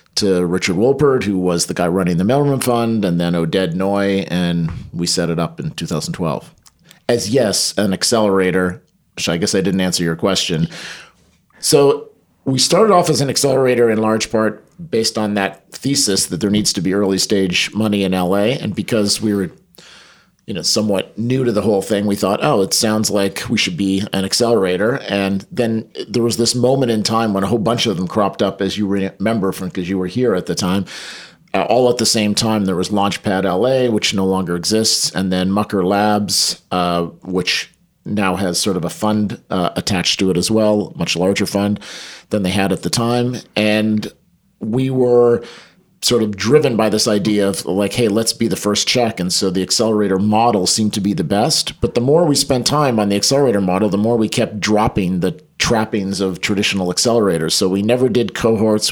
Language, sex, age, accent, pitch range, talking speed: English, male, 40-59, American, 95-115 Hz, 205 wpm